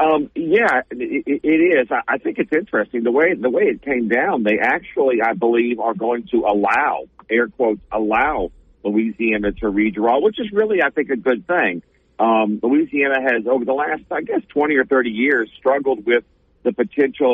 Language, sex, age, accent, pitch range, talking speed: English, male, 50-69, American, 110-130 Hz, 185 wpm